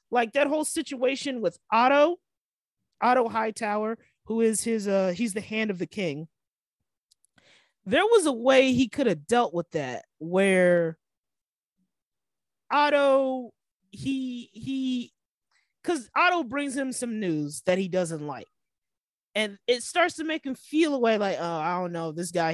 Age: 20-39